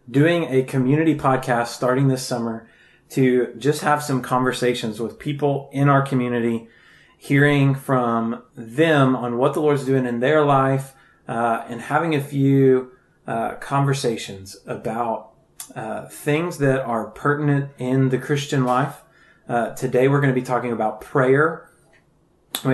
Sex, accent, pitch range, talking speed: male, American, 115-135 Hz, 145 wpm